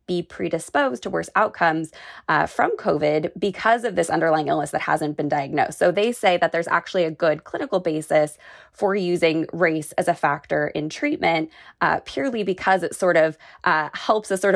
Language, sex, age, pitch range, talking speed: English, female, 20-39, 155-180 Hz, 185 wpm